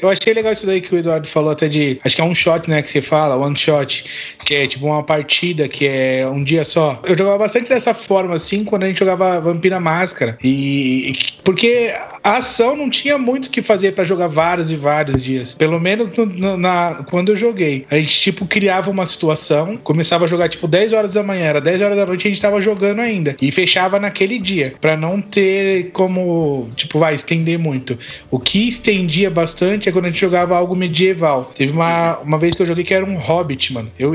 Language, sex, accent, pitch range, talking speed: Portuguese, male, Brazilian, 150-195 Hz, 225 wpm